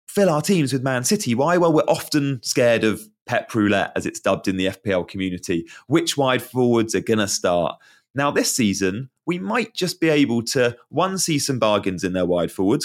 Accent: British